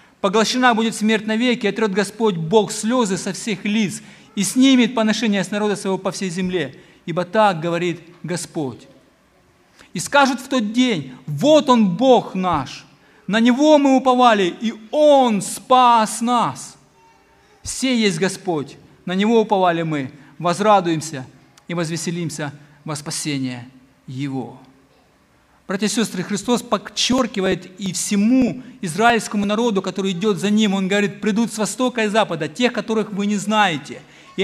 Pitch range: 185-230 Hz